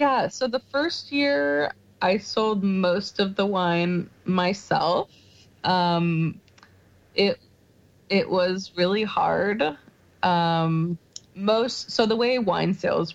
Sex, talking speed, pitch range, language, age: female, 115 wpm, 170-205 Hz, English, 20-39